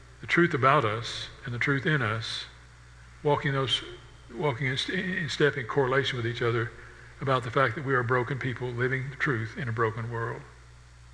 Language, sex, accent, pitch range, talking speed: English, male, American, 115-145 Hz, 180 wpm